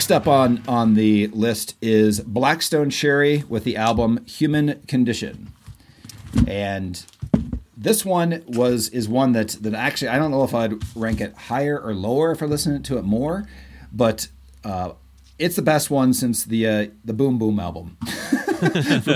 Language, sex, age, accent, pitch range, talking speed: English, male, 40-59, American, 100-130 Hz, 165 wpm